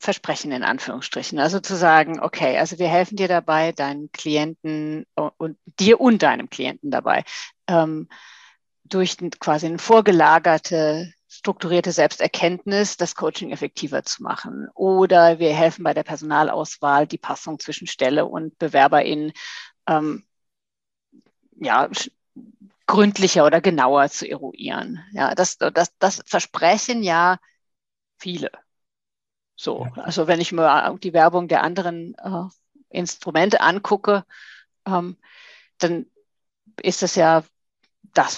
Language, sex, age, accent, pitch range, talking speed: German, female, 50-69, German, 160-200 Hz, 115 wpm